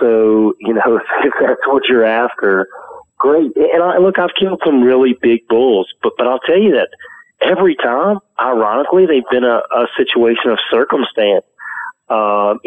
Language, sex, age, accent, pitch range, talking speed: English, male, 40-59, American, 105-170 Hz, 165 wpm